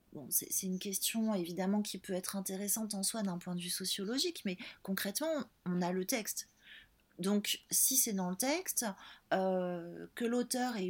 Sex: female